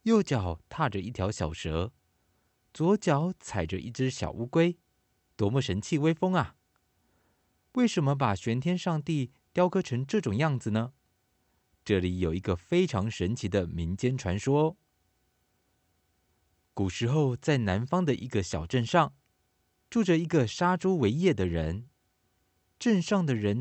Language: Chinese